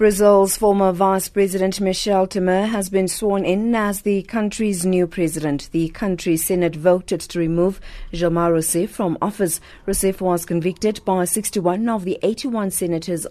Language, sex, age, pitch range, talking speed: English, female, 40-59, 170-200 Hz, 155 wpm